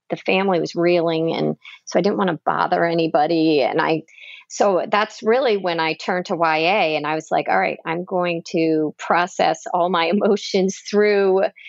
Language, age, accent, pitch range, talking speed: English, 40-59, American, 165-205 Hz, 185 wpm